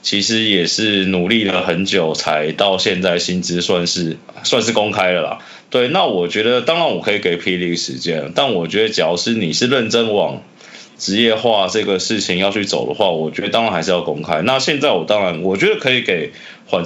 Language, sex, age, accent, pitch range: Chinese, male, 20-39, native, 90-110 Hz